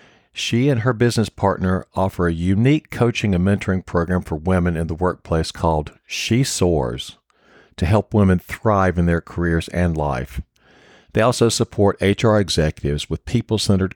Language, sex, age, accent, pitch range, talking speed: English, male, 50-69, American, 80-100 Hz, 155 wpm